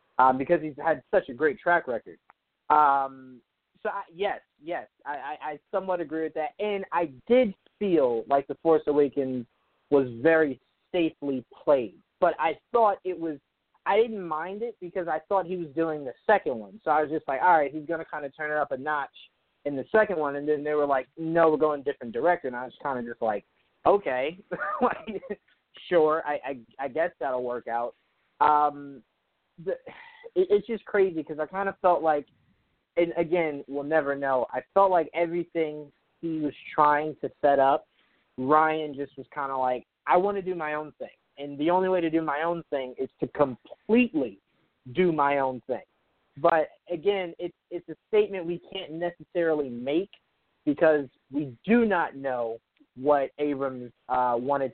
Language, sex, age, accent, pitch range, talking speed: English, male, 20-39, American, 140-180 Hz, 190 wpm